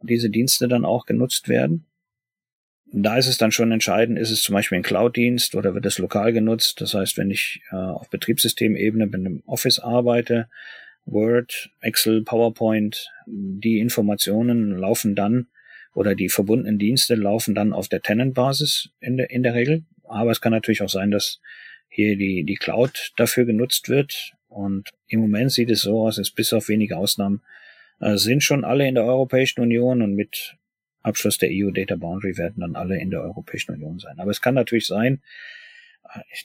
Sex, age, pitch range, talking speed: male, 40-59, 100-120 Hz, 180 wpm